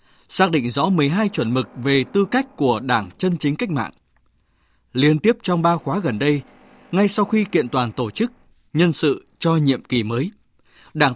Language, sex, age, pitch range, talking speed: Vietnamese, male, 20-39, 140-195 Hz, 200 wpm